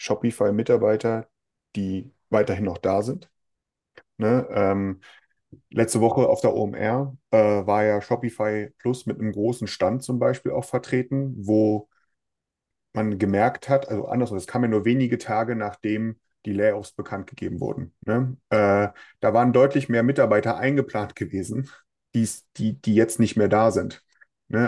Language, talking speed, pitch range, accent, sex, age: German, 150 wpm, 105-130 Hz, German, male, 30-49